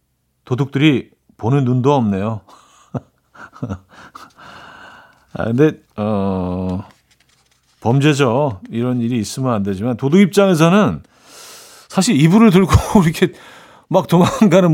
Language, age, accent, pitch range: Korean, 40-59, native, 115-165 Hz